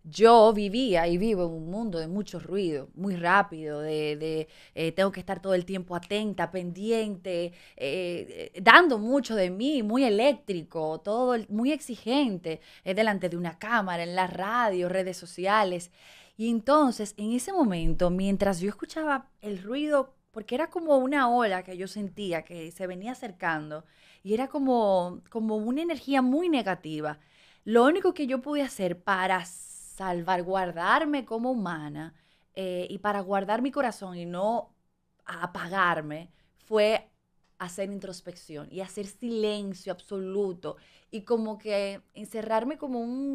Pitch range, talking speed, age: 180-230 Hz, 150 wpm, 20-39